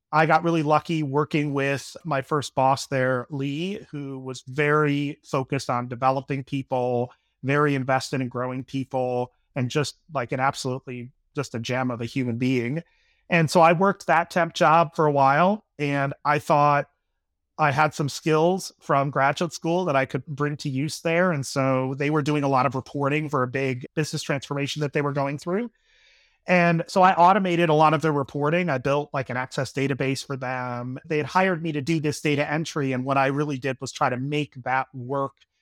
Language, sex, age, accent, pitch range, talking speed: English, male, 30-49, American, 135-160 Hz, 200 wpm